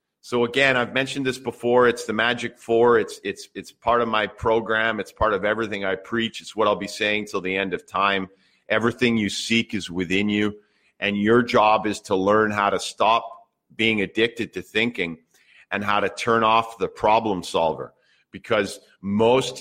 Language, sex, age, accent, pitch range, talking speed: English, male, 40-59, American, 105-120 Hz, 190 wpm